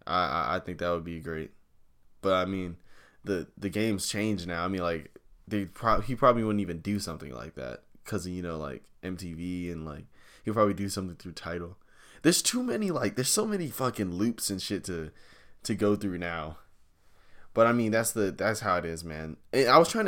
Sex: male